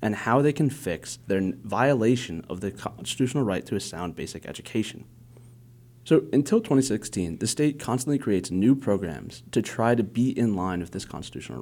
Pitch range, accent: 100-130 Hz, American